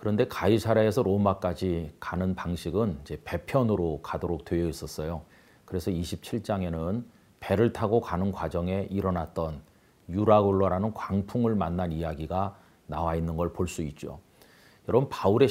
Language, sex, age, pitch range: Korean, male, 40-59, 85-110 Hz